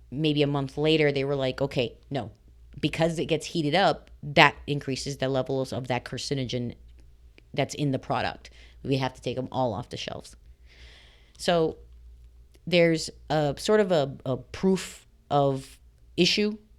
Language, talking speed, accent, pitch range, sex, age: English, 155 wpm, American, 130-160 Hz, female, 30-49